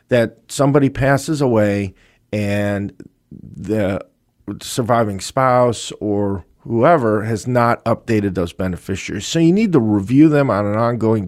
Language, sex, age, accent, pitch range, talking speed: English, male, 50-69, American, 100-135 Hz, 130 wpm